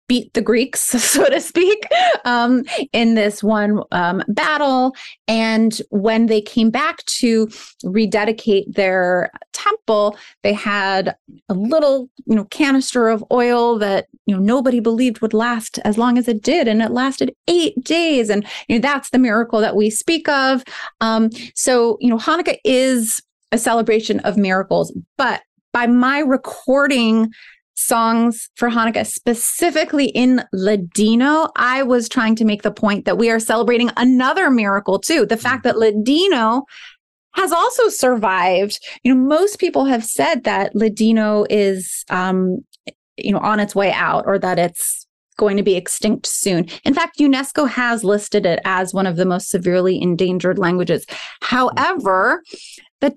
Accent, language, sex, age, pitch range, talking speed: American, English, female, 30-49, 210-260 Hz, 155 wpm